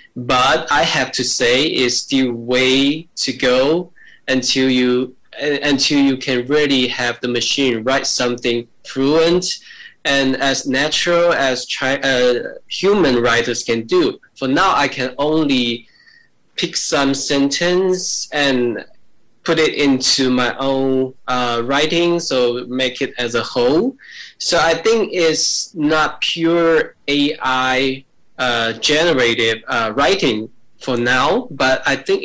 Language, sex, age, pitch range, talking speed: English, male, 10-29, 125-155 Hz, 130 wpm